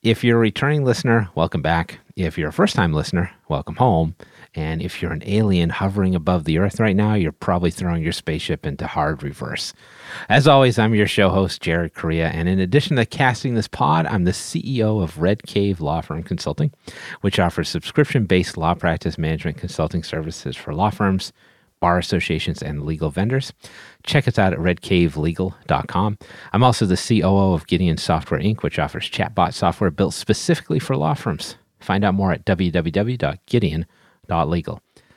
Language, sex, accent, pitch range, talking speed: English, male, American, 85-115 Hz, 170 wpm